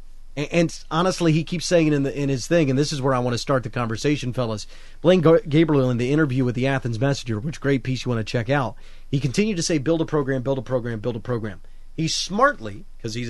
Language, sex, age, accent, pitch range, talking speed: English, male, 30-49, American, 125-155 Hz, 250 wpm